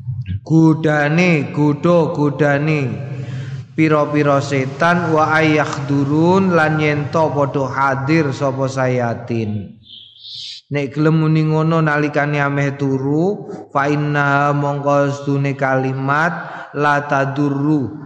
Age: 20-39